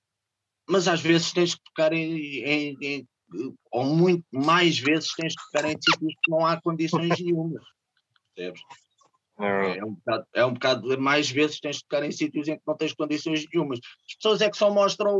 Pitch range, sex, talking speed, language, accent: 145-175 Hz, male, 200 wpm, Portuguese, Brazilian